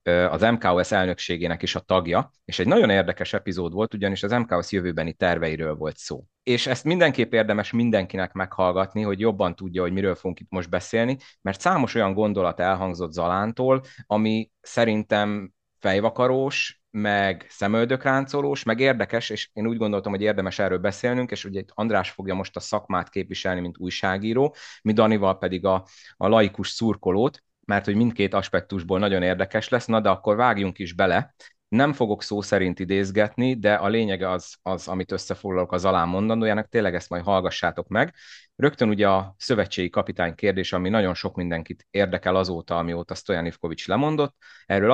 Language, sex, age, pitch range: Hungarian, male, 30-49, 90-110 Hz